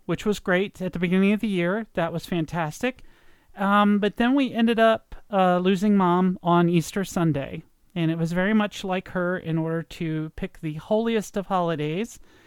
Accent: American